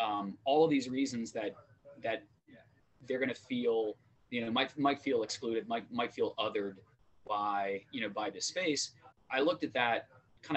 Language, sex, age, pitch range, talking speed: English, male, 20-39, 110-140 Hz, 180 wpm